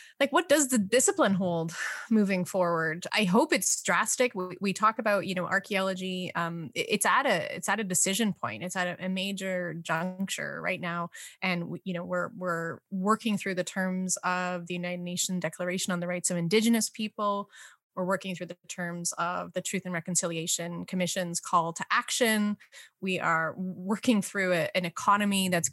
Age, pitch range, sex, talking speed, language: 20-39, 180-205 Hz, female, 185 wpm, English